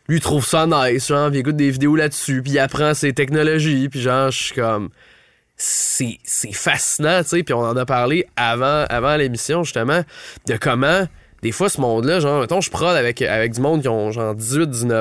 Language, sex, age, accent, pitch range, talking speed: French, male, 20-39, Canadian, 125-160 Hz, 210 wpm